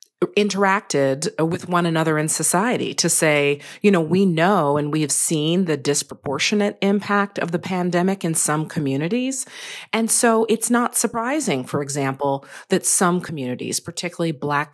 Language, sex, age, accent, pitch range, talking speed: English, female, 40-59, American, 145-185 Hz, 150 wpm